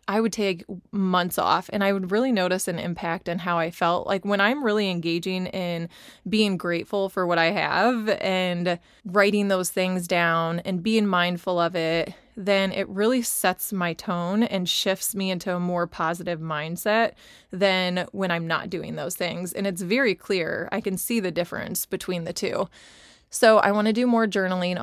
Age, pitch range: 20-39, 175-205 Hz